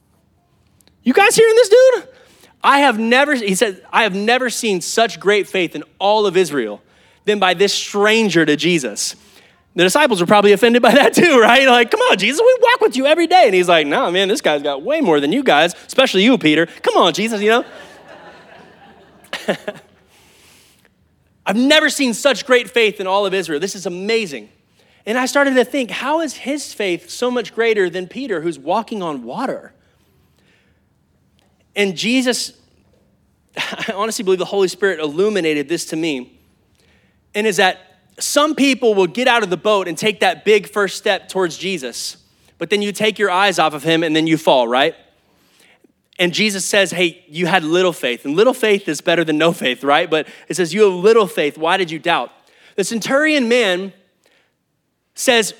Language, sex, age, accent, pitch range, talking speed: English, male, 20-39, American, 180-245 Hz, 190 wpm